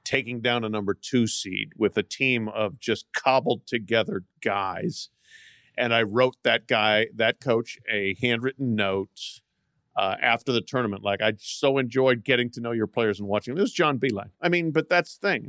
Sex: male